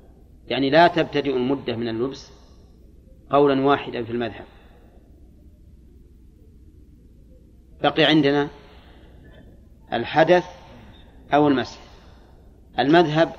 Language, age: Arabic, 40-59